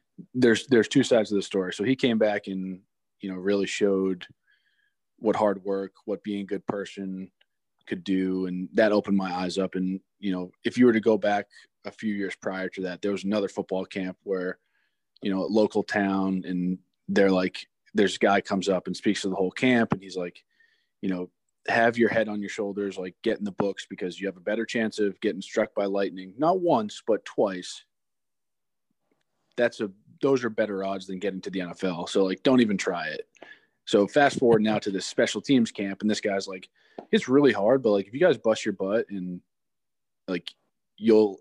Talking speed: 210 wpm